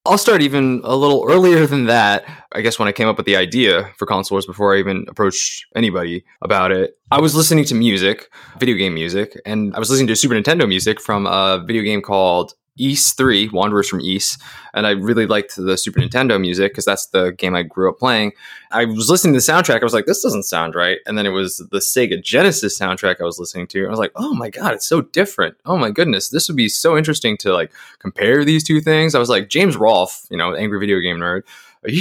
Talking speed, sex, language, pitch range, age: 240 wpm, male, English, 100-135 Hz, 20-39